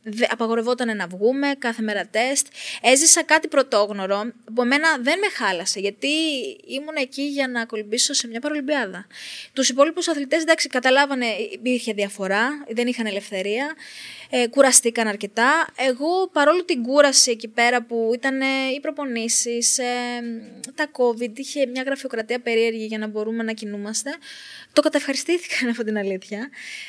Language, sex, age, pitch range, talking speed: Greek, female, 20-39, 215-275 Hz, 135 wpm